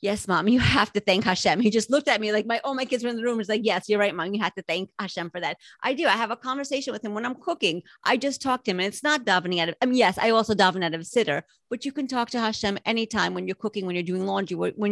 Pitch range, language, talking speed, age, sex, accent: 180-225 Hz, English, 320 wpm, 30-49, female, American